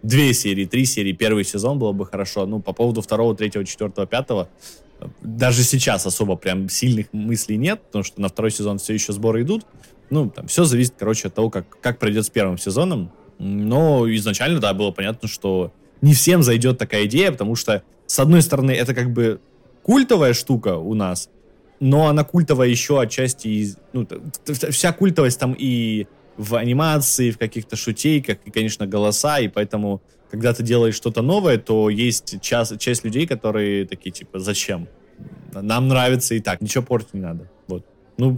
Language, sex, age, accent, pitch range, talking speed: Russian, male, 20-39, native, 105-140 Hz, 175 wpm